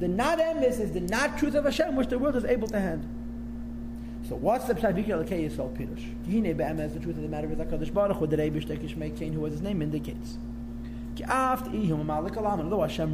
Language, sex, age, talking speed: English, male, 30-49, 125 wpm